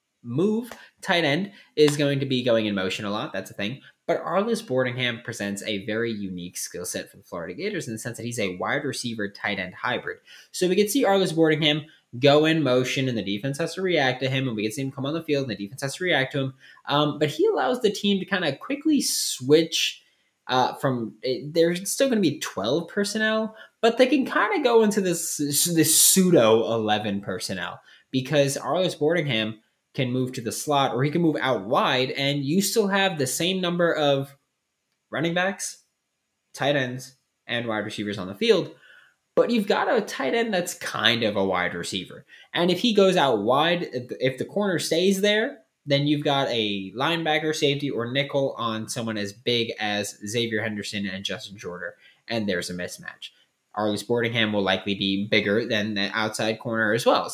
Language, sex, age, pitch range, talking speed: English, male, 20-39, 110-170 Hz, 205 wpm